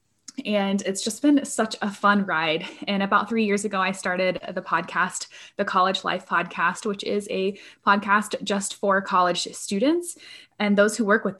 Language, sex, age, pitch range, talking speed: English, female, 20-39, 185-225 Hz, 180 wpm